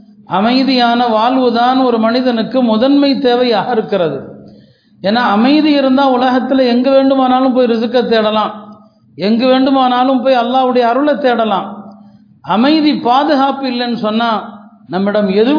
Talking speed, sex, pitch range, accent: 65 wpm, male, 210-250 Hz, native